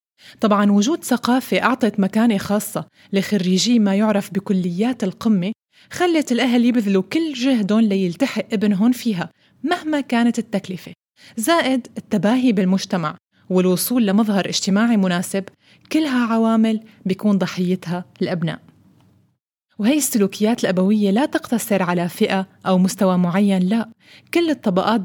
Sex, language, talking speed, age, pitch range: female, Arabic, 115 wpm, 20-39, 195-245 Hz